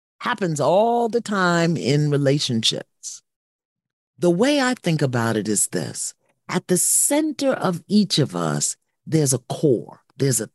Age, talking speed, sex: 40-59, 150 wpm, male